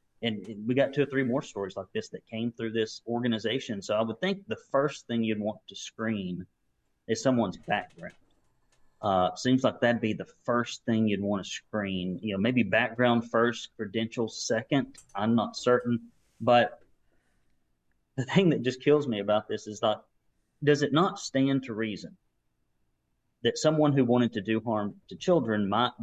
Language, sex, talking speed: English, male, 180 wpm